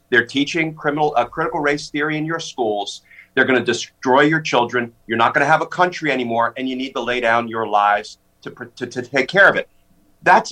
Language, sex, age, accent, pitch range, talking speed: English, male, 50-69, American, 130-160 Hz, 230 wpm